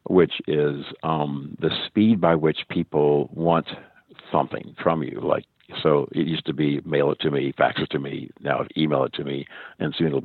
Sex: male